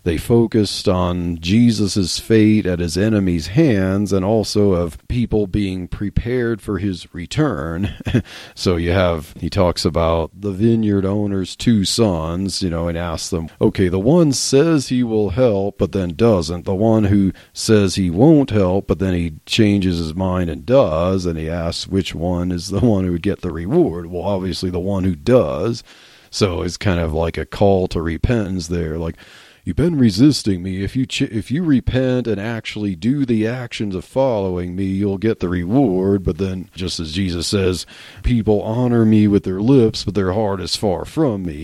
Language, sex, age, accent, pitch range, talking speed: English, male, 40-59, American, 90-110 Hz, 185 wpm